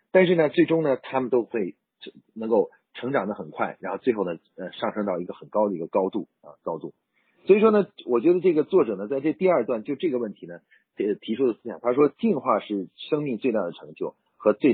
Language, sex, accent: Chinese, male, native